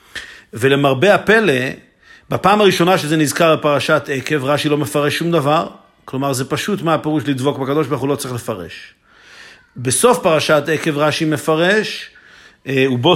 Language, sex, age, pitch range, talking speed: Hebrew, male, 50-69, 135-175 Hz, 135 wpm